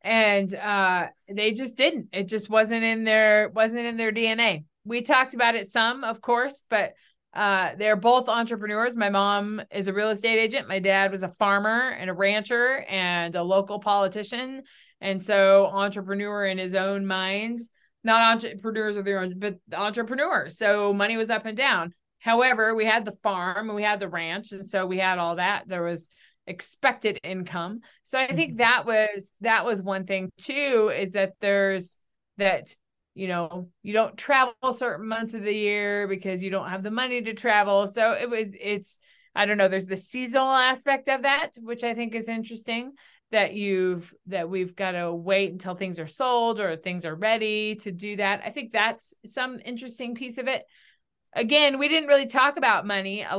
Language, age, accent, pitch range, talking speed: English, 20-39, American, 195-235 Hz, 190 wpm